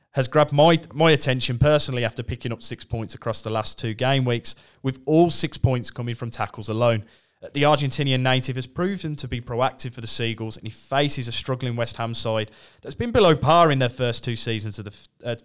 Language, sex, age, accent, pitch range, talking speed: English, male, 30-49, British, 115-150 Hz, 220 wpm